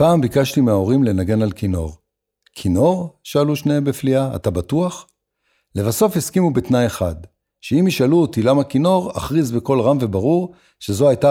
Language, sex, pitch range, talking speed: Hebrew, male, 105-140 Hz, 145 wpm